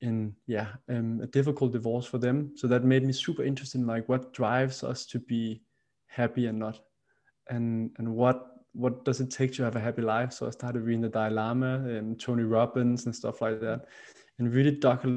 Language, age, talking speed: English, 20-39, 205 wpm